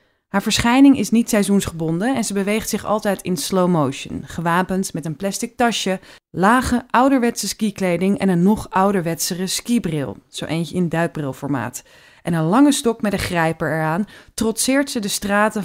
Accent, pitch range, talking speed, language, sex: Dutch, 170-225 Hz, 160 wpm, Dutch, female